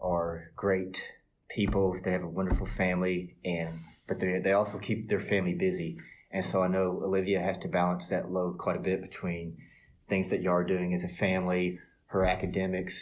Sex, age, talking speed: male, 30-49, 190 wpm